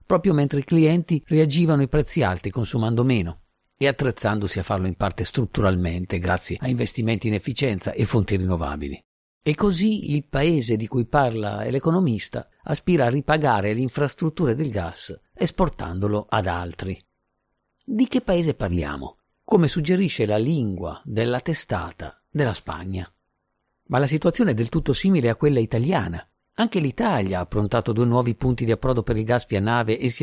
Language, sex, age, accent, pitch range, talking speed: Italian, male, 50-69, native, 95-145 Hz, 160 wpm